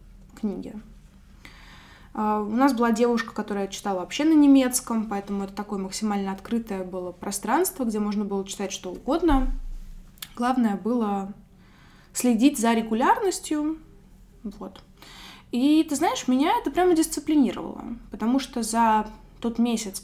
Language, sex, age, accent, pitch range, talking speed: Russian, female, 20-39, native, 205-270 Hz, 125 wpm